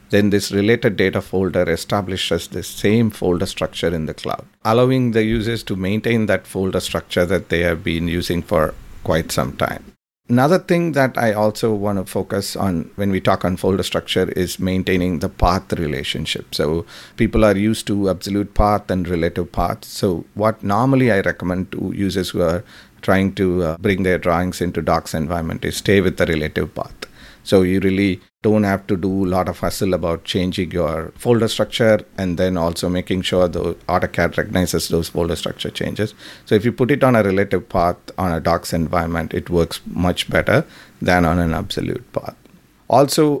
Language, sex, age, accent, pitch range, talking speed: English, male, 50-69, Indian, 90-115 Hz, 185 wpm